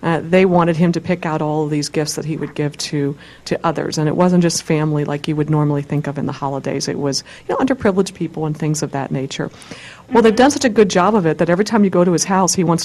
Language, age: English, 50-69